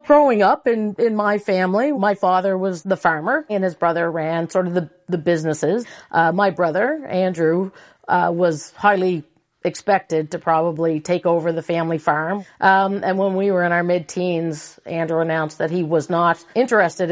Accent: American